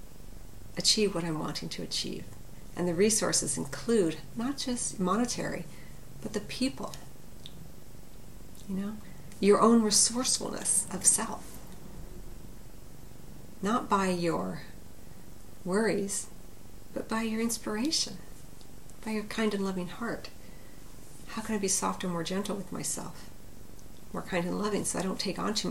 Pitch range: 150-210 Hz